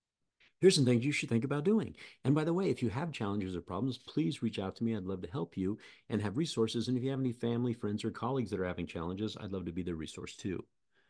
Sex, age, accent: male, 50-69, American